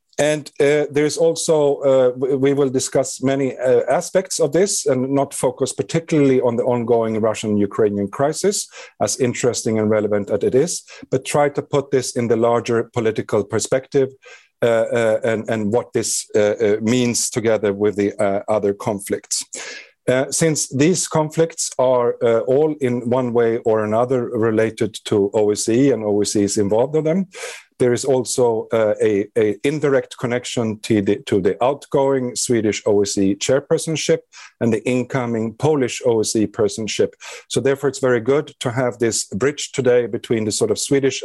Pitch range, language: 110-140 Hz, English